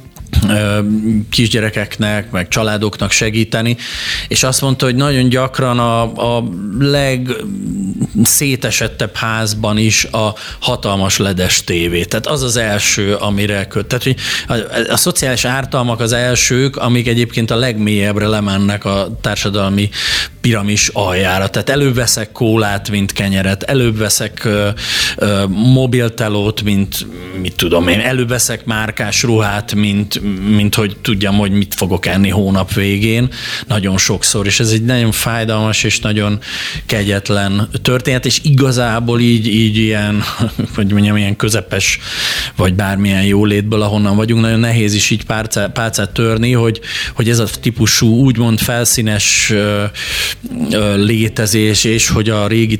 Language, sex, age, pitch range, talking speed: Hungarian, male, 30-49, 105-120 Hz, 130 wpm